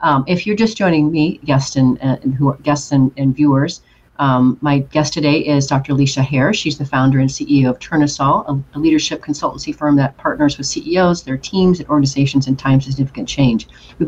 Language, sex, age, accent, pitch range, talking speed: English, female, 40-59, American, 135-165 Hz, 210 wpm